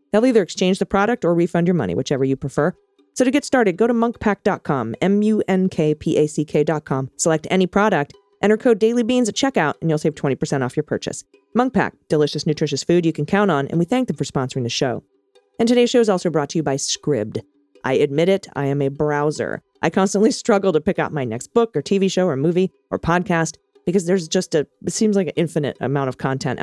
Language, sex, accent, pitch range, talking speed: English, female, American, 150-200 Hz, 215 wpm